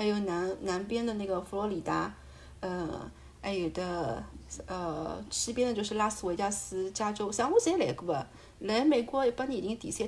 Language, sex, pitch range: Chinese, female, 180-235 Hz